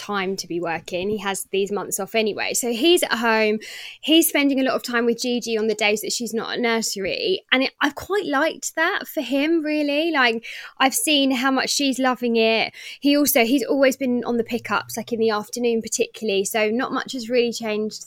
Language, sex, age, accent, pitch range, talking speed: English, female, 20-39, British, 205-260 Hz, 215 wpm